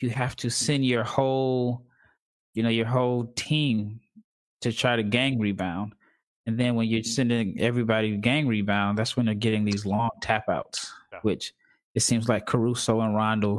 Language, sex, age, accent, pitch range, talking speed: English, male, 20-39, American, 105-120 Hz, 170 wpm